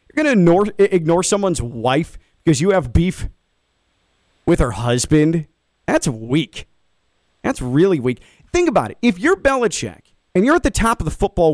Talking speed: 160 wpm